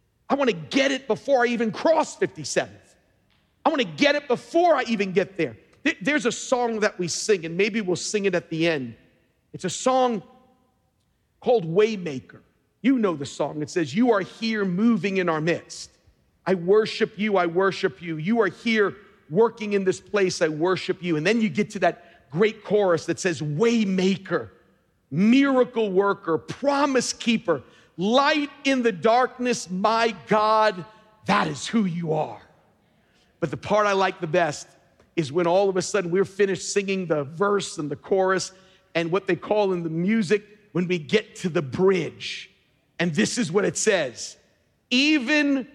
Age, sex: 50-69, male